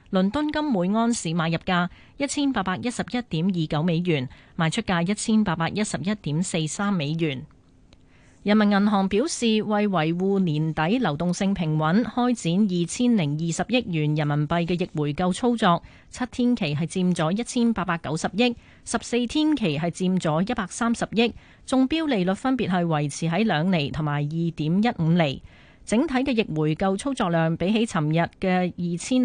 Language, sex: Chinese, female